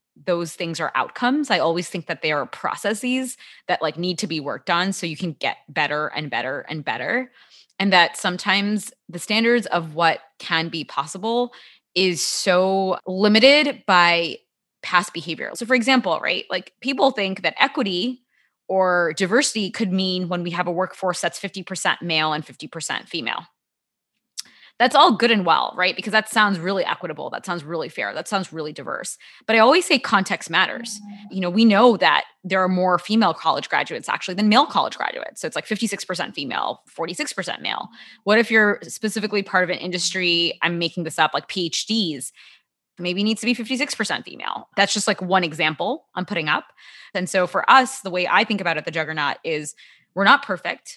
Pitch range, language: 170-220 Hz, English